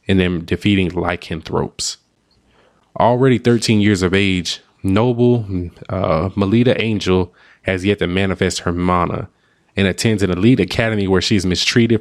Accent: American